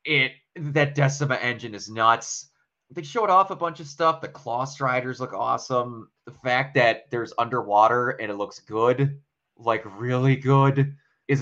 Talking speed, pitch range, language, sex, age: 165 wpm, 105-140 Hz, English, male, 20-39